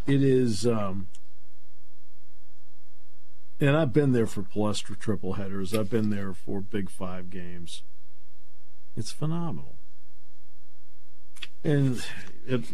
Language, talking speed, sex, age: English, 105 wpm, male, 50-69